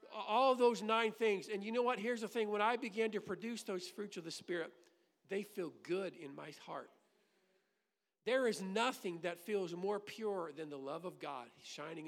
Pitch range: 190-230 Hz